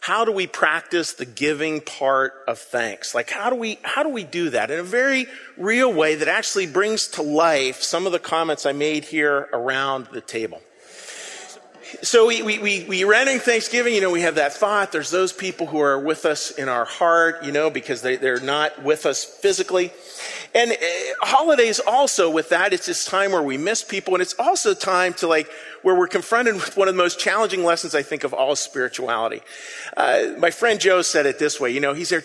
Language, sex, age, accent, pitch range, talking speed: English, male, 40-59, American, 150-240 Hz, 215 wpm